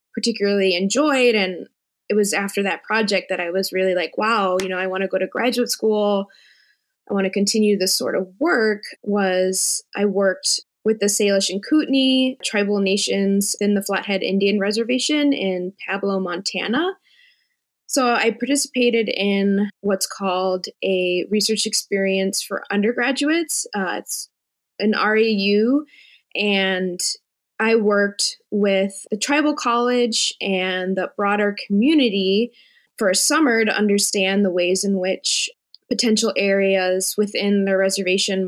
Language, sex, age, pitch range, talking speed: English, female, 20-39, 195-235 Hz, 140 wpm